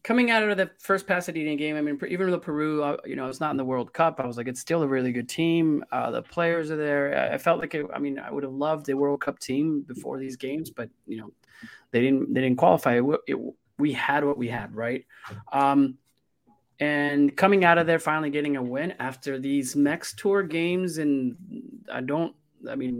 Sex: male